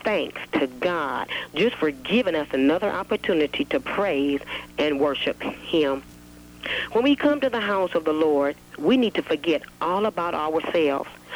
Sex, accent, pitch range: female, American, 140-215 Hz